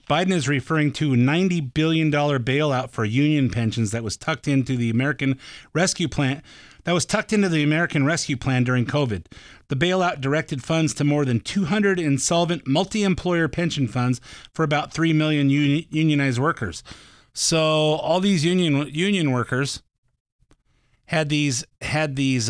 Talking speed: 155 wpm